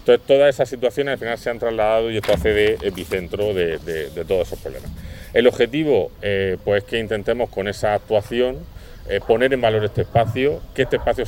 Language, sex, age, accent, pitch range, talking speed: Spanish, male, 30-49, Spanish, 100-120 Hz, 200 wpm